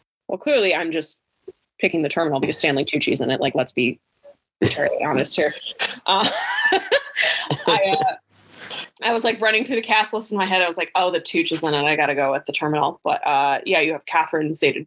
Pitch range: 150-195 Hz